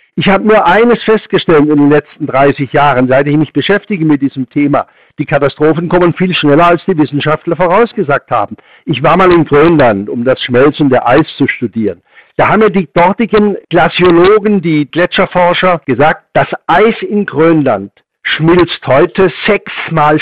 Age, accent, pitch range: 60-79, German, 145-180 Hz